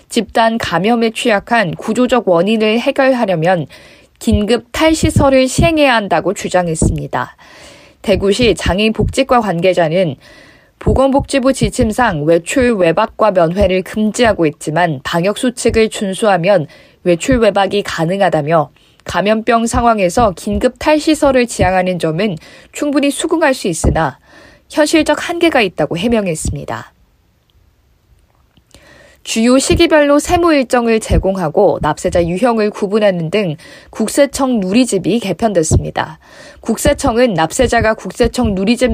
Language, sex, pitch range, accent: Korean, female, 180-250 Hz, native